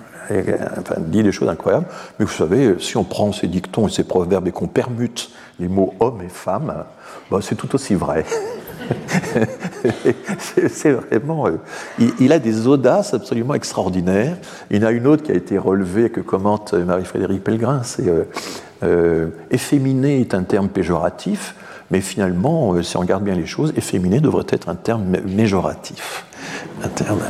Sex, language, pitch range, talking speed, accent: male, French, 90-120 Hz, 175 wpm, French